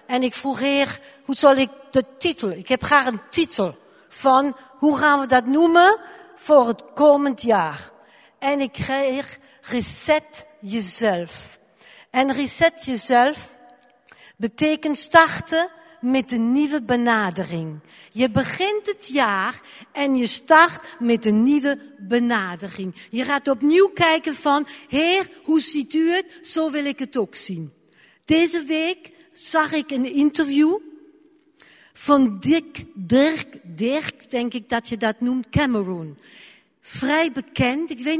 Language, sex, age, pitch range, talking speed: Dutch, female, 60-79, 240-305 Hz, 135 wpm